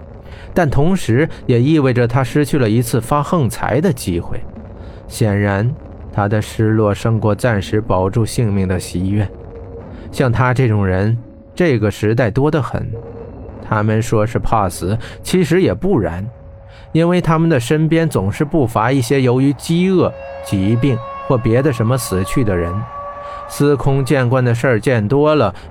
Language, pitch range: Chinese, 105-145 Hz